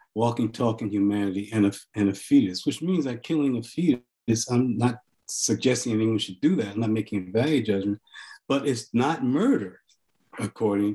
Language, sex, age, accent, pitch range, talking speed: English, male, 50-69, American, 110-140 Hz, 180 wpm